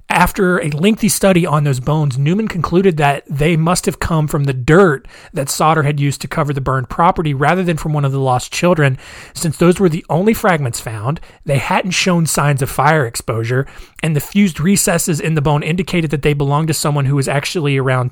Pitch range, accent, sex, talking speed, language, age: 140-175 Hz, American, male, 215 wpm, English, 30-49